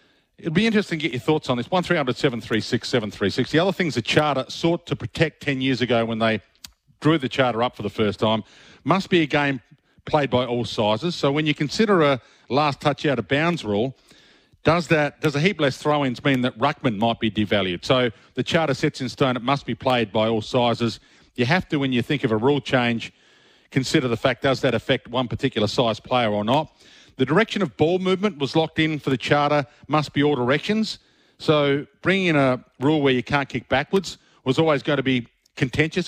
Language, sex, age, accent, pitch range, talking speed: English, male, 40-59, Australian, 125-155 Hz, 220 wpm